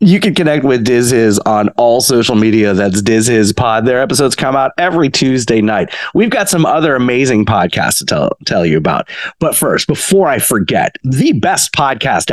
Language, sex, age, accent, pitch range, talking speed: English, male, 30-49, American, 115-160 Hz, 195 wpm